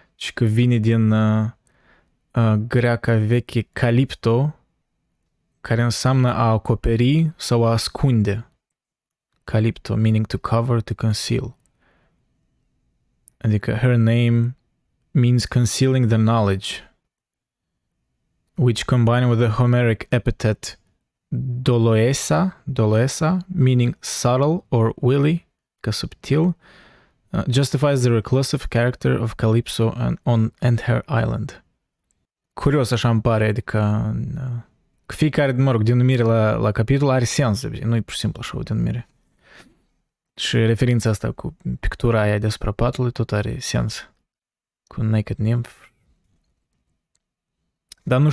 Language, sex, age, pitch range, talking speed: Romanian, male, 20-39, 110-130 Hz, 120 wpm